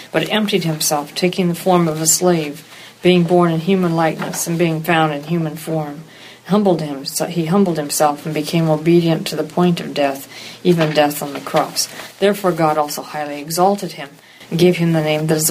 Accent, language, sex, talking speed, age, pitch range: American, English, female, 200 wpm, 50-69, 155-180 Hz